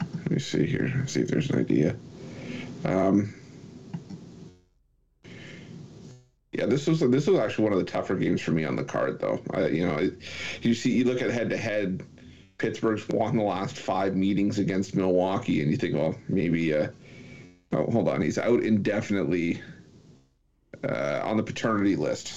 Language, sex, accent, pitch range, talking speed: English, male, American, 95-115 Hz, 170 wpm